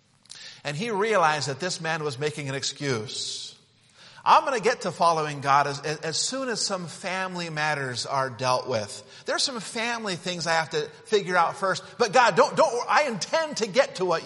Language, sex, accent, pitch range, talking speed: English, male, American, 135-210 Hz, 200 wpm